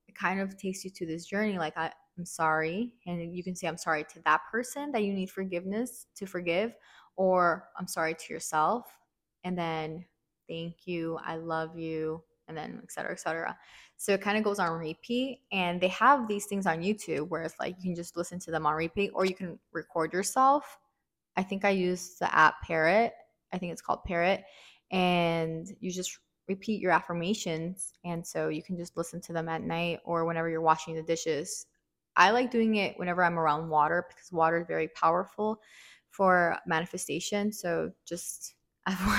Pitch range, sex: 160-190 Hz, female